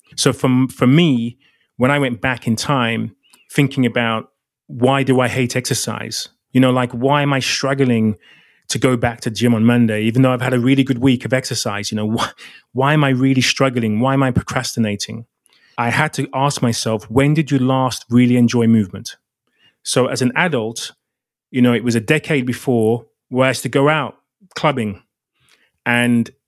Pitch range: 115-135 Hz